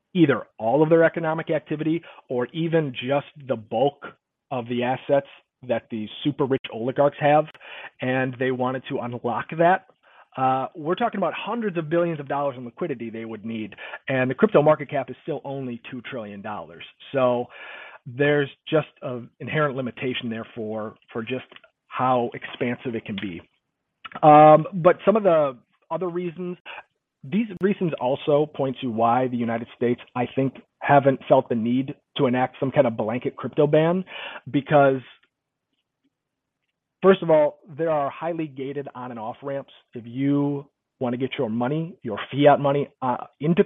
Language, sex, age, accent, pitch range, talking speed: English, male, 40-59, American, 125-155 Hz, 165 wpm